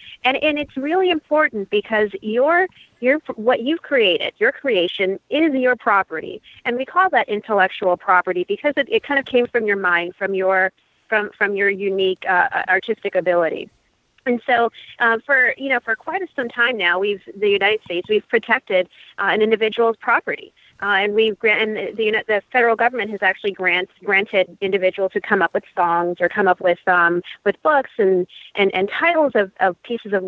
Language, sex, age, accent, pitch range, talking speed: English, female, 30-49, American, 190-250 Hz, 190 wpm